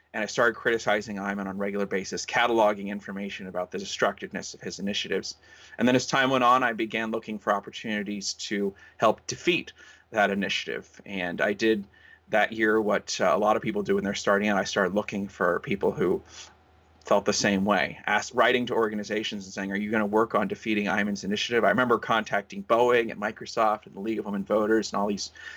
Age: 30-49